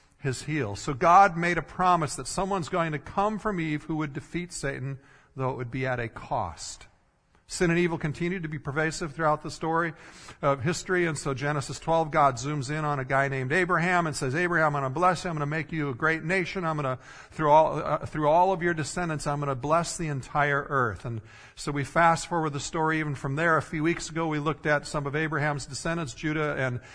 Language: English